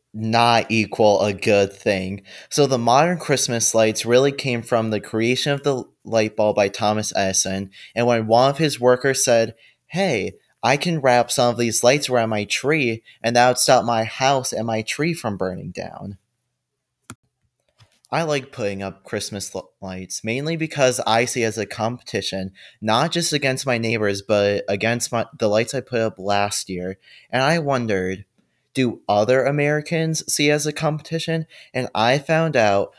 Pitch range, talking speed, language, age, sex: 105-135 Hz, 175 wpm, English, 20-39, male